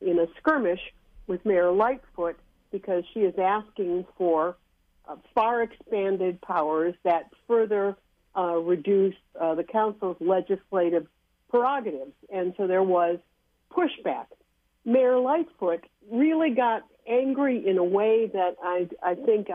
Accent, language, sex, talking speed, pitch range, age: American, English, female, 120 wpm, 175-225 Hz, 60-79